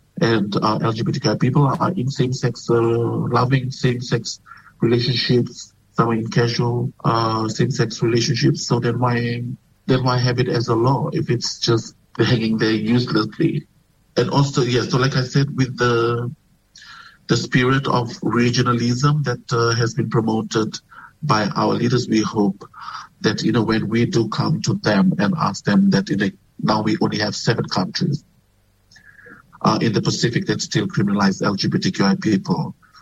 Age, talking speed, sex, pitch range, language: 50-69, 155 wpm, male, 110-135 Hz, English